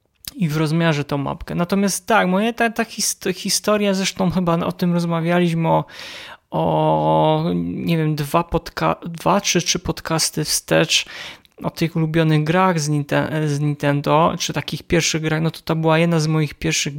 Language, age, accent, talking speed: Polish, 20-39, native, 160 wpm